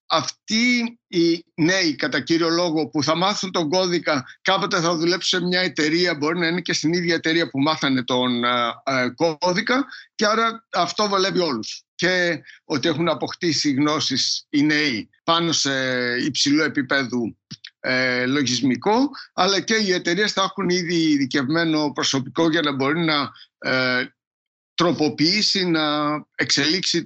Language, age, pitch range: Greek, 60-79, 155-195 Hz